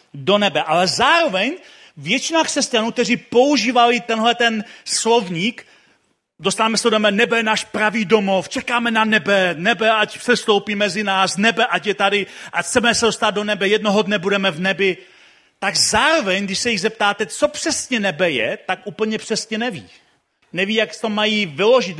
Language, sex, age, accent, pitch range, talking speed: Czech, male, 40-59, native, 190-235 Hz, 170 wpm